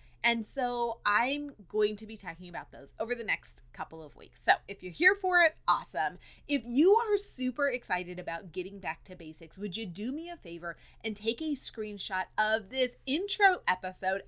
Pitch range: 180-265 Hz